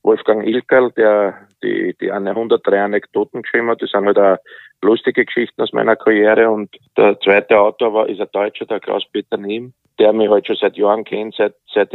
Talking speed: 205 wpm